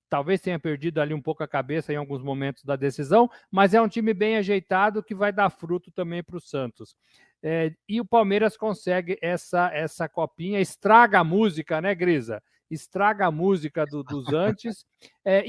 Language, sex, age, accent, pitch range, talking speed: Portuguese, male, 50-69, Brazilian, 150-205 Hz, 175 wpm